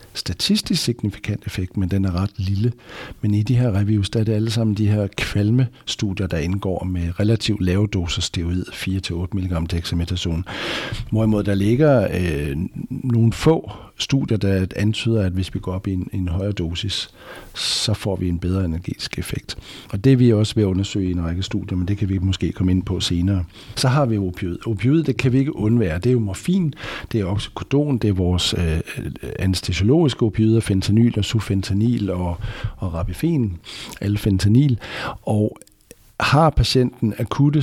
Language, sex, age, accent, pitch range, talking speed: Danish, male, 60-79, native, 90-115 Hz, 180 wpm